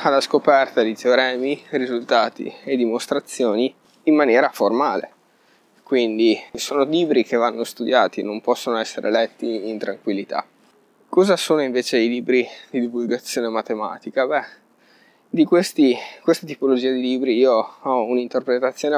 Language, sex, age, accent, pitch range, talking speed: Italian, male, 20-39, native, 115-140 Hz, 125 wpm